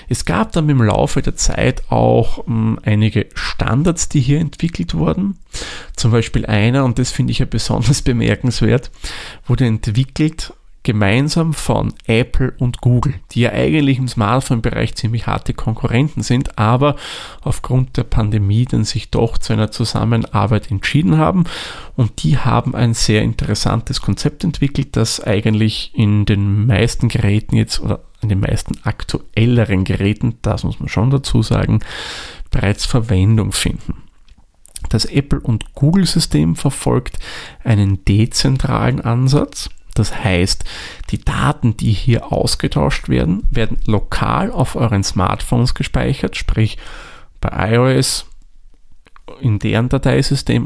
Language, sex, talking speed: German, male, 130 wpm